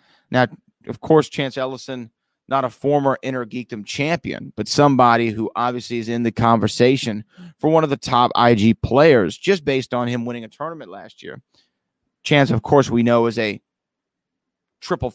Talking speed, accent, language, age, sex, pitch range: 165 wpm, American, English, 30-49, male, 120-145 Hz